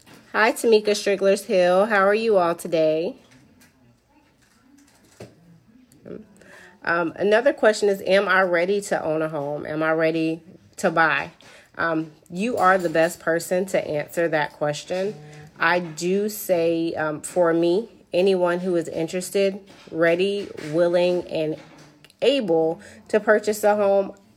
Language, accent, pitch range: English, American, 160-180 Hz